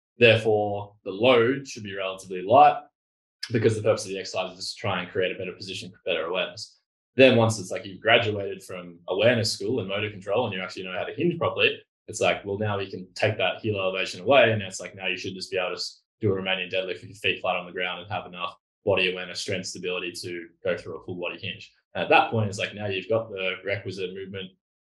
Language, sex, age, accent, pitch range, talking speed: English, male, 20-39, Australian, 95-135 Hz, 250 wpm